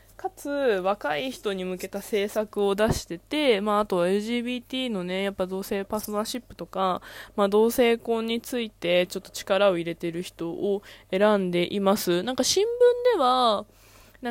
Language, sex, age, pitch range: Japanese, female, 20-39, 180-245 Hz